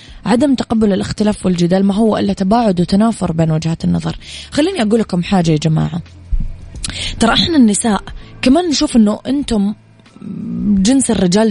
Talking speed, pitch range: 140 wpm, 170-225 Hz